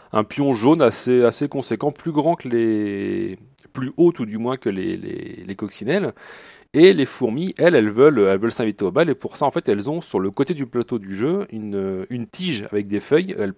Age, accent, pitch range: 40-59, French, 105-150 Hz